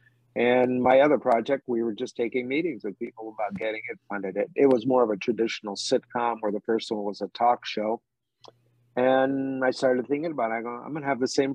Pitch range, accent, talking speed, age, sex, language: 110-130 Hz, American, 225 wpm, 50-69, male, English